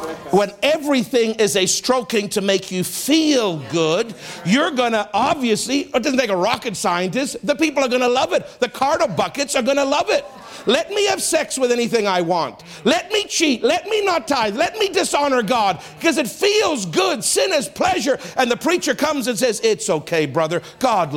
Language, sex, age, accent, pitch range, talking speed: English, male, 50-69, American, 195-290 Hz, 200 wpm